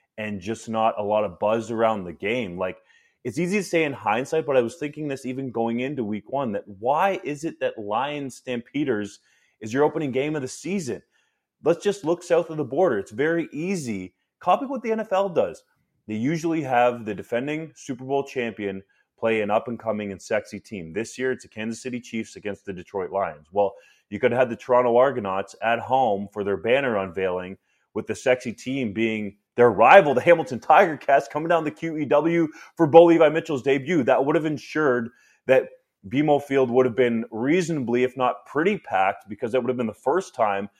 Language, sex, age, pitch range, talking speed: English, male, 30-49, 110-150 Hz, 200 wpm